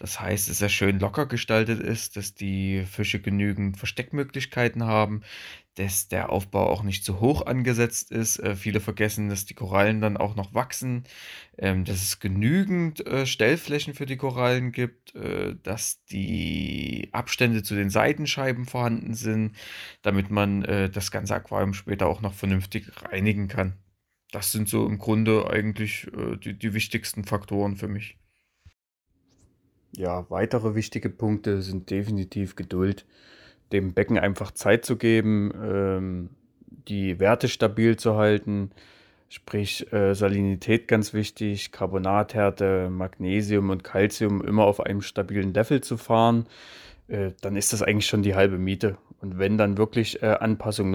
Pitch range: 95-110 Hz